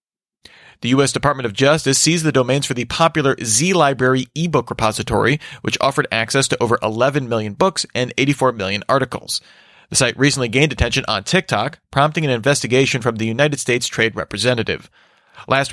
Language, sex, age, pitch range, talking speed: English, male, 30-49, 115-150 Hz, 165 wpm